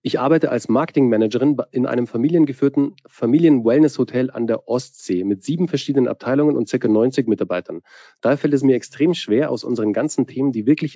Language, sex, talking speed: German, male, 170 wpm